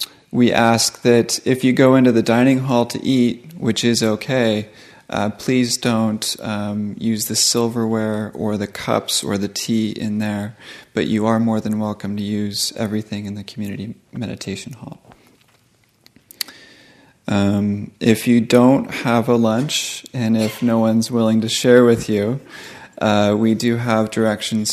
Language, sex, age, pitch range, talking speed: English, male, 30-49, 105-115 Hz, 160 wpm